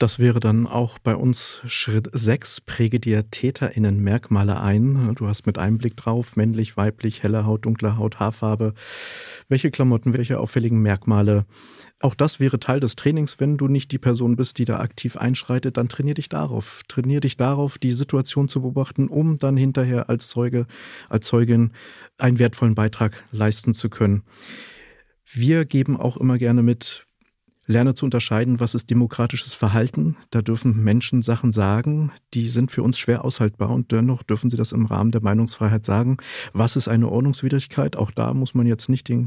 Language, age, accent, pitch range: German, 40-59, German, 110-130 Hz